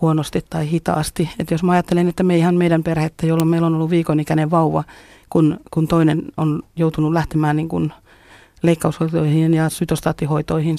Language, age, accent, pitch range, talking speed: Finnish, 30-49, native, 160-175 Hz, 160 wpm